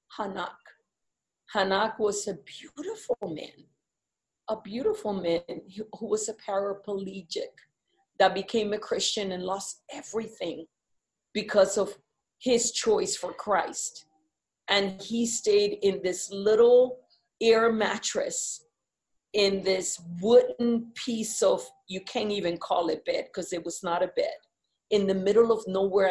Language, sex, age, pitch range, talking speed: English, female, 40-59, 195-260 Hz, 130 wpm